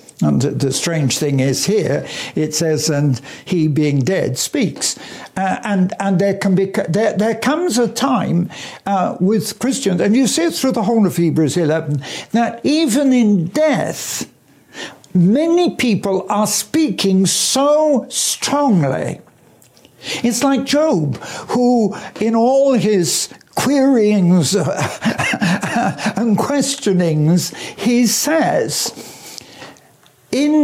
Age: 60-79